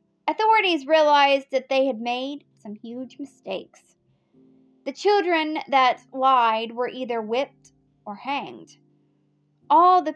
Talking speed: 120 wpm